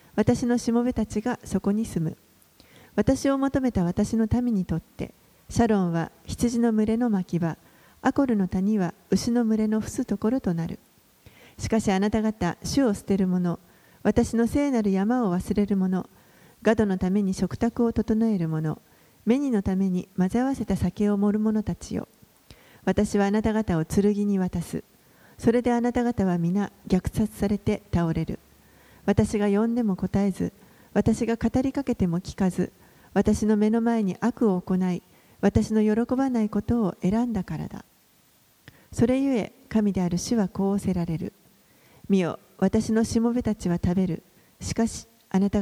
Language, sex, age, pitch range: Japanese, female, 40-59, 190-230 Hz